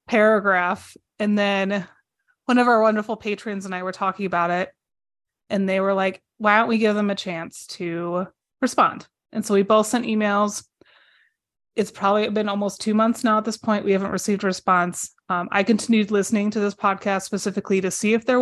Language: English